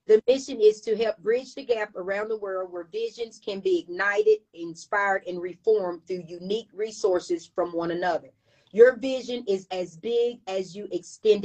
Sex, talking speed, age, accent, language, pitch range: female, 175 wpm, 30-49, American, English, 180-225 Hz